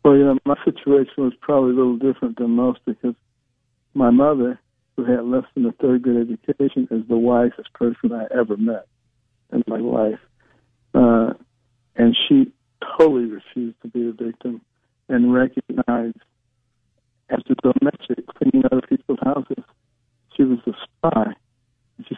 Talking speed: 150 wpm